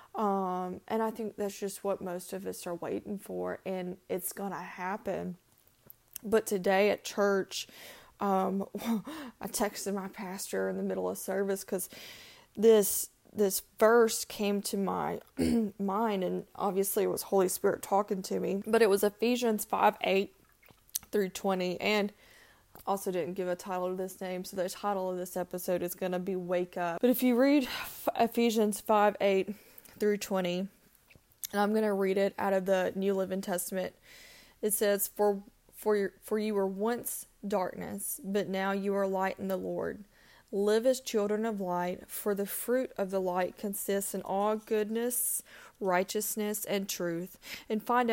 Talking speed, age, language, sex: 170 wpm, 20-39, English, female